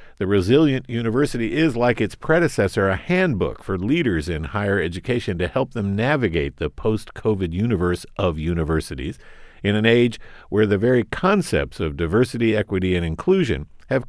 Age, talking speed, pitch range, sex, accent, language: 50-69, 155 wpm, 95-135 Hz, male, American, English